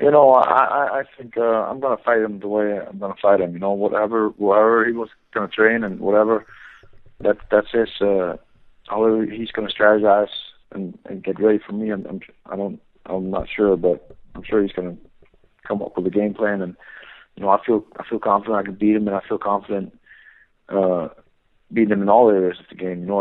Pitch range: 100-110 Hz